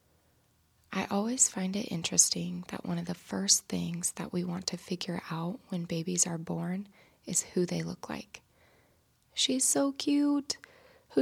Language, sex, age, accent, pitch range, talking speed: English, female, 20-39, American, 175-220 Hz, 160 wpm